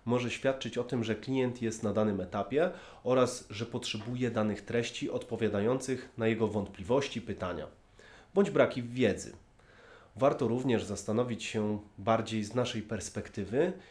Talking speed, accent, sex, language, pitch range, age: 135 wpm, native, male, Polish, 105-125 Hz, 30-49